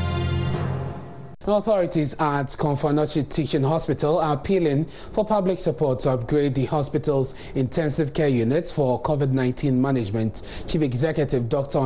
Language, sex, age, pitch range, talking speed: English, male, 30-49, 140-185 Hz, 115 wpm